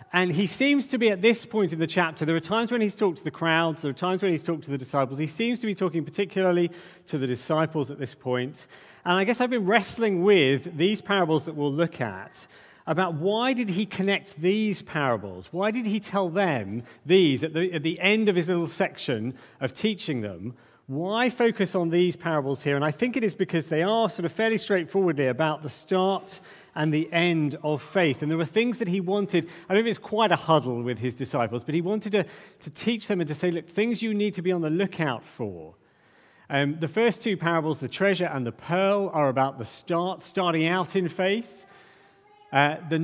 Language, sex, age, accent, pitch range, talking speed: English, male, 40-59, British, 150-195 Hz, 225 wpm